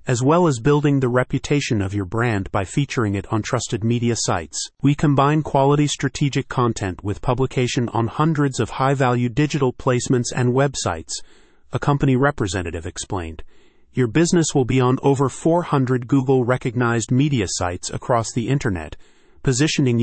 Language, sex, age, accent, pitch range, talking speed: English, male, 40-59, American, 105-140 Hz, 145 wpm